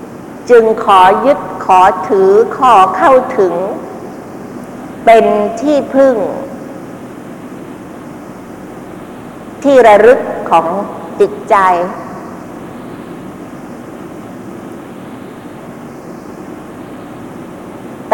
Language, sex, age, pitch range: Thai, female, 60-79, 205-265 Hz